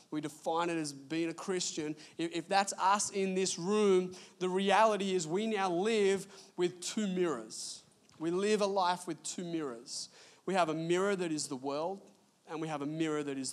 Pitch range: 145-200 Hz